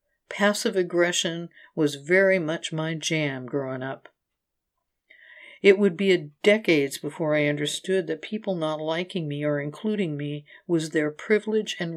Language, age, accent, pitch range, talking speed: English, 60-79, American, 150-195 Hz, 140 wpm